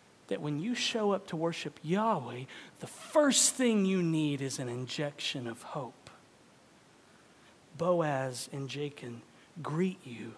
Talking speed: 135 wpm